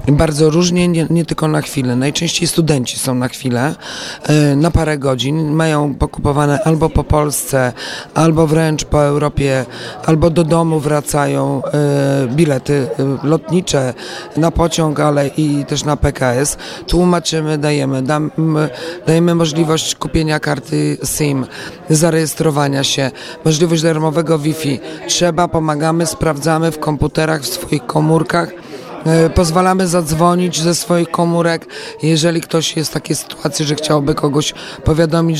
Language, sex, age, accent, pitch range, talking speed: Polish, male, 40-59, native, 145-165 Hz, 120 wpm